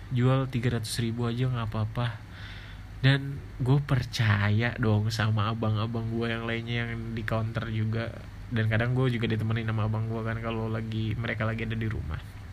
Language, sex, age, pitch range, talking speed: Indonesian, male, 20-39, 110-125 Hz, 170 wpm